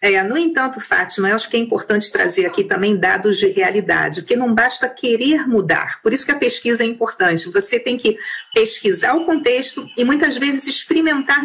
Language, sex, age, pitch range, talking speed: Portuguese, female, 40-59, 215-300 Hz, 190 wpm